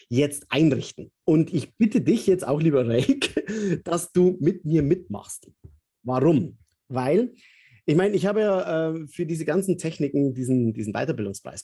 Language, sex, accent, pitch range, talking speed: German, male, German, 130-190 Hz, 155 wpm